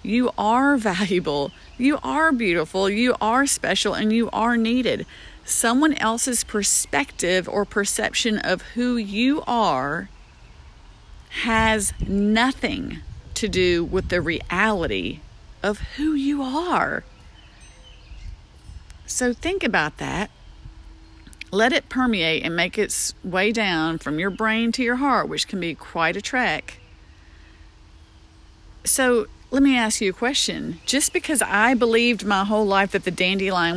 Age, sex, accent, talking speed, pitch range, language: 40-59, female, American, 130 wpm, 190-265 Hz, English